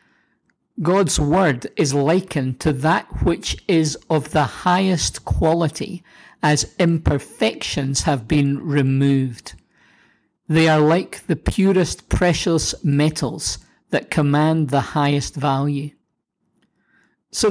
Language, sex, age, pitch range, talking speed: English, male, 50-69, 140-180 Hz, 105 wpm